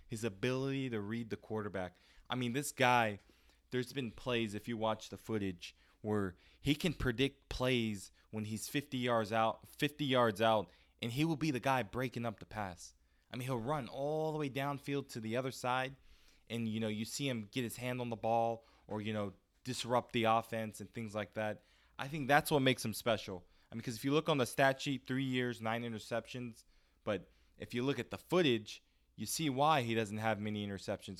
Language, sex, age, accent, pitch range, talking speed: English, male, 20-39, American, 105-125 Hz, 215 wpm